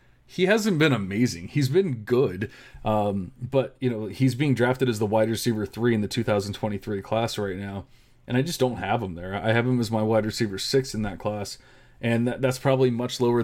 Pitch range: 105-125 Hz